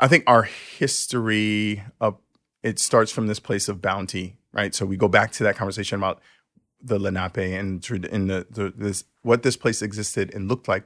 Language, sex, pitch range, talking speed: English, male, 95-115 Hz, 195 wpm